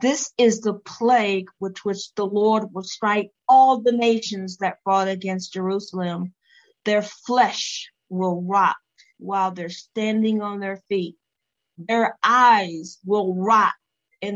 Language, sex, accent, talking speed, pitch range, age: English, female, American, 135 wpm, 180-205 Hz, 50-69